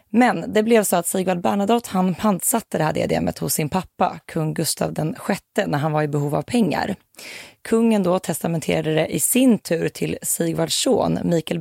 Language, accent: Swedish, native